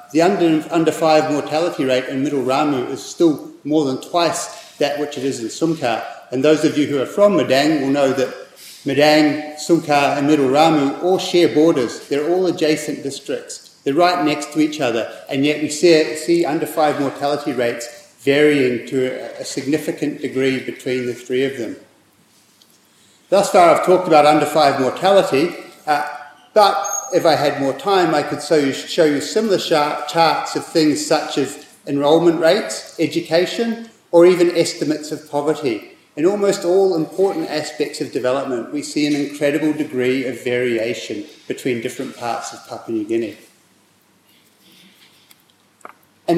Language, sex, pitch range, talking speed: English, male, 140-170 Hz, 160 wpm